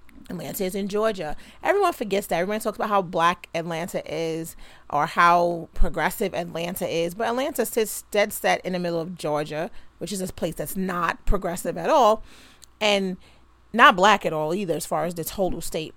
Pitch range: 175-215 Hz